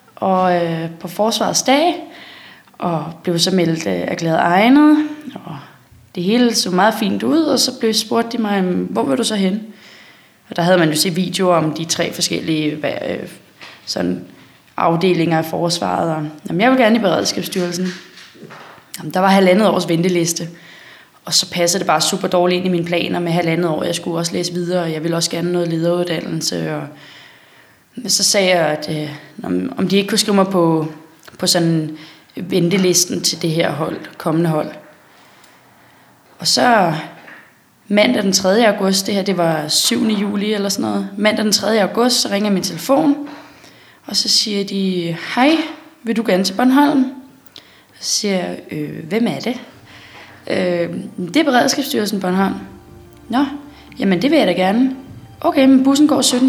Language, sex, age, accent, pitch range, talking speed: Danish, female, 20-39, native, 170-230 Hz, 180 wpm